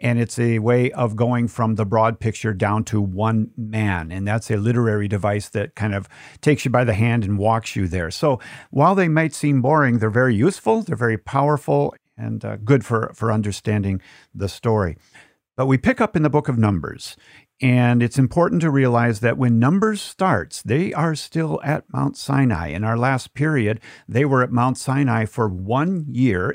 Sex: male